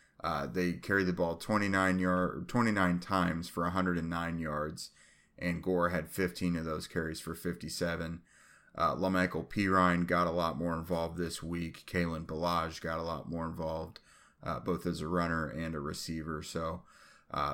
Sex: male